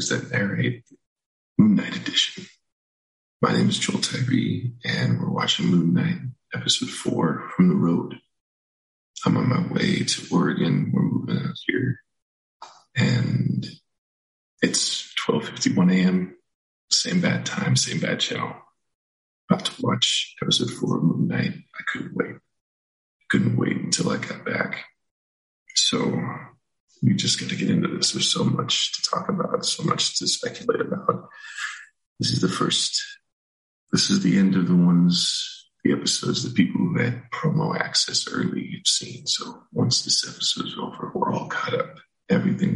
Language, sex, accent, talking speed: English, male, American, 155 wpm